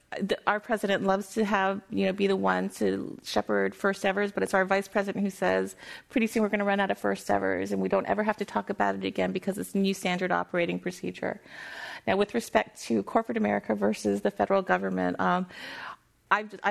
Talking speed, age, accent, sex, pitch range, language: 215 wpm, 30-49, American, female, 160-205 Hz, English